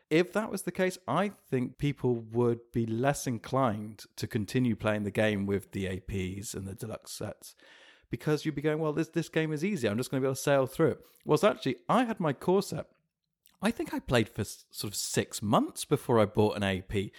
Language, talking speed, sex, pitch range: English, 225 wpm, male, 110-155 Hz